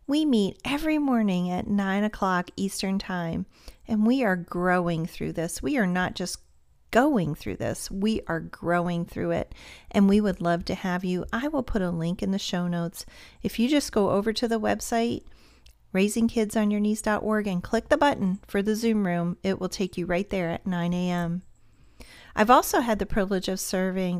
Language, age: English, 40-59